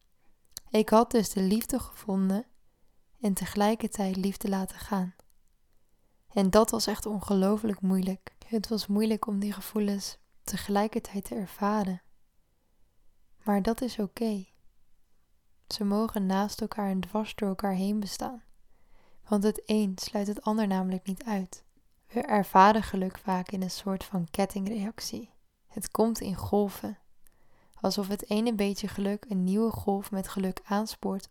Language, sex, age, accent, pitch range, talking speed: Dutch, female, 10-29, Dutch, 190-215 Hz, 140 wpm